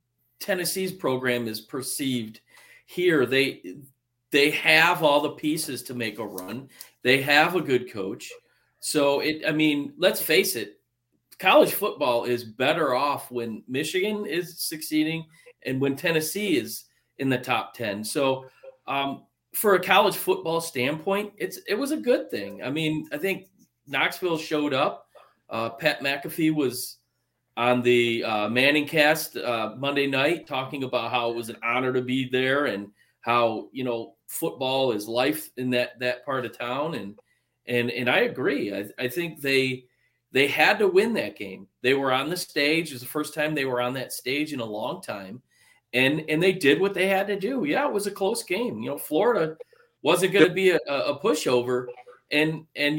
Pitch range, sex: 125-165 Hz, male